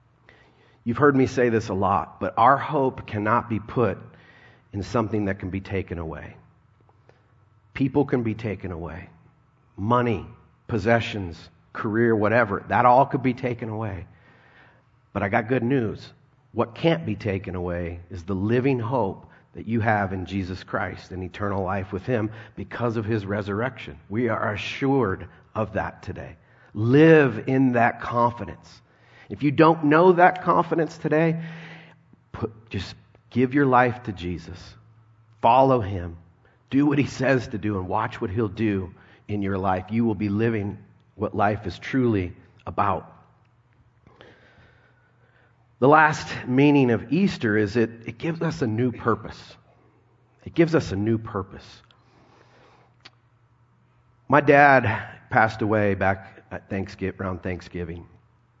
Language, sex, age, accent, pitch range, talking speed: English, male, 40-59, American, 100-125 Hz, 140 wpm